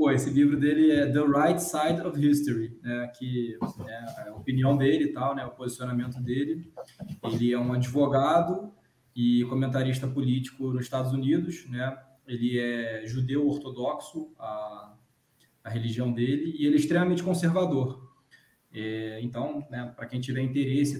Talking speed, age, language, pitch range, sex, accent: 150 wpm, 20-39, Portuguese, 130-170 Hz, male, Brazilian